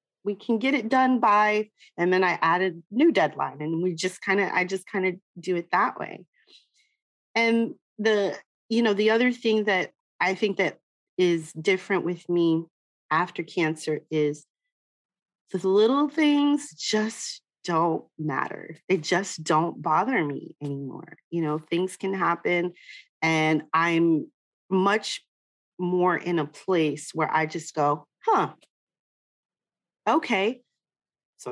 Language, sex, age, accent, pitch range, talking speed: English, female, 30-49, American, 170-230 Hz, 140 wpm